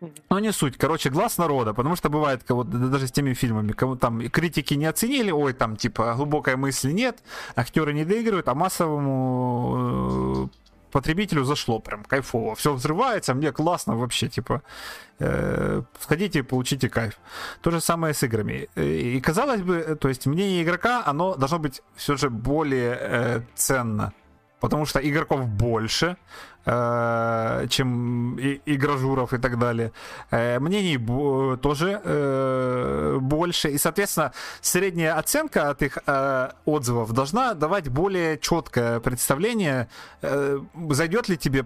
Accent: native